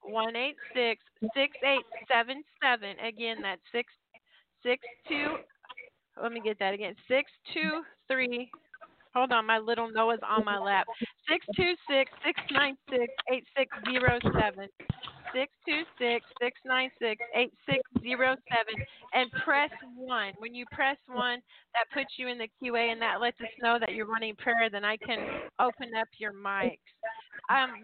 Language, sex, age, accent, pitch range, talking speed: English, female, 40-59, American, 225-265 Hz, 170 wpm